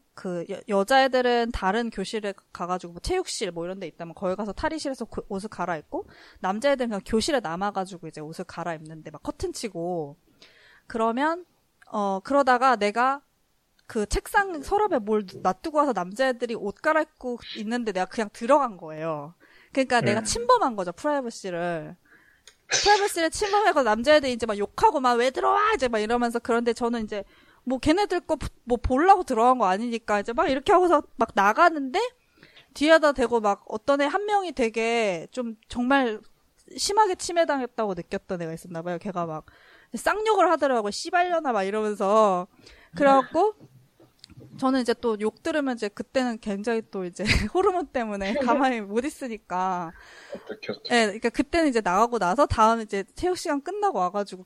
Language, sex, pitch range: Korean, female, 195-290 Hz